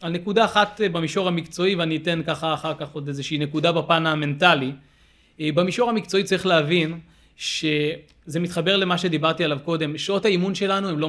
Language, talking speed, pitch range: Hebrew, 160 wpm, 155-185 Hz